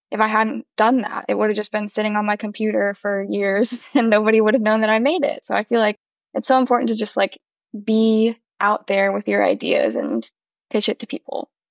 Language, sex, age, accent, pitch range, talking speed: English, female, 10-29, American, 210-255 Hz, 235 wpm